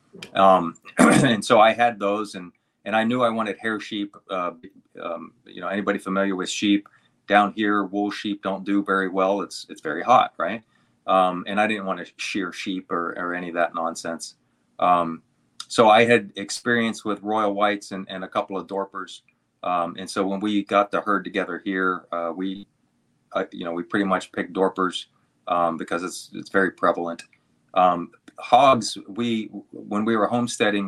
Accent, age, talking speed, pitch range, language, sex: American, 30-49, 185 wpm, 95-110 Hz, English, male